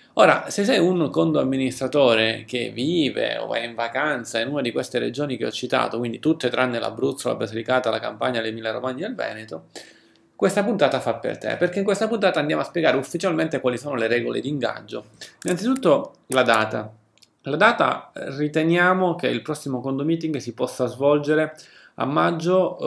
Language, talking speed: Italian, 180 wpm